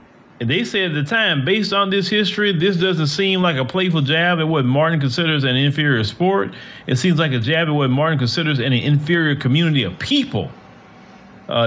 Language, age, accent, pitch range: English, 30-49, American, 130-175 Hz